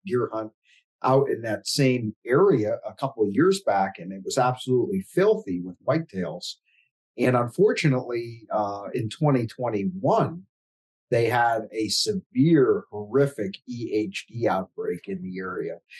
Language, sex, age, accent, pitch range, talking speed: English, male, 50-69, American, 105-135 Hz, 130 wpm